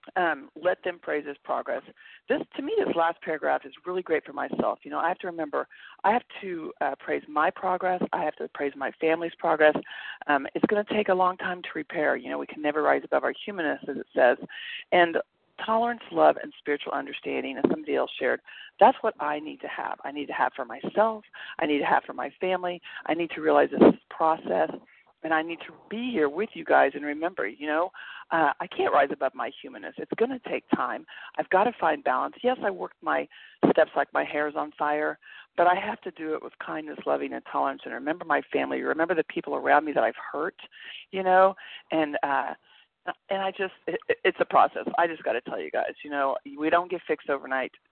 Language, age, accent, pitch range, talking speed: English, 40-59, American, 150-210 Hz, 230 wpm